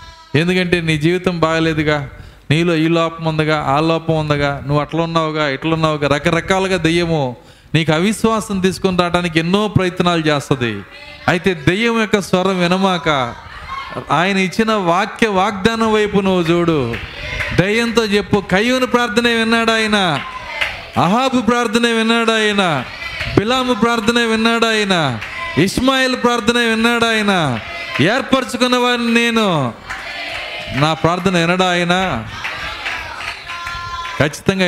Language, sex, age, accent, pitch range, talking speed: Telugu, male, 30-49, native, 145-195 Hz, 100 wpm